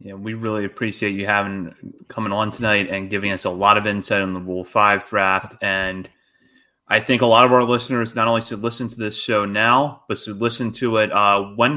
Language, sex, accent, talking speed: English, male, American, 230 wpm